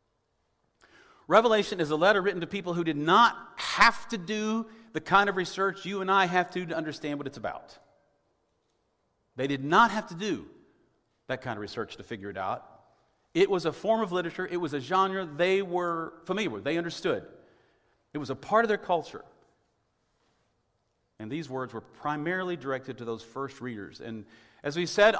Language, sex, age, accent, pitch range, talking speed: English, male, 40-59, American, 130-190 Hz, 185 wpm